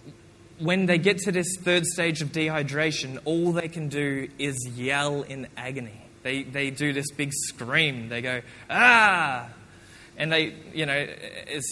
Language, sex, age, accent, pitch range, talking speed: English, male, 20-39, Australian, 135-185 Hz, 160 wpm